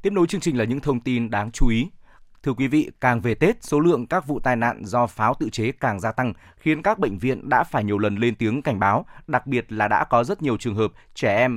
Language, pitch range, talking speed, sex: Vietnamese, 110-135 Hz, 275 wpm, male